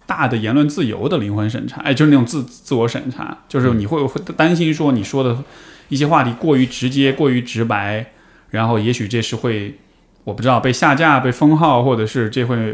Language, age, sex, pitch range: Chinese, 20-39, male, 110-140 Hz